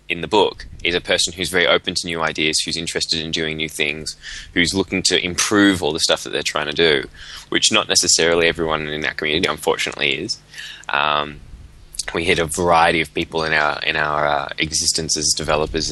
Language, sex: English, male